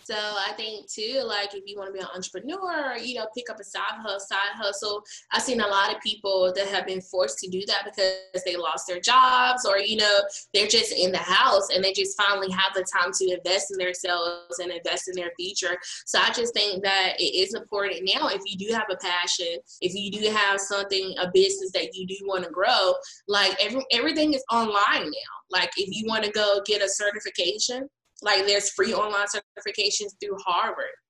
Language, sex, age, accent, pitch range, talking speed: English, female, 20-39, American, 190-225 Hz, 215 wpm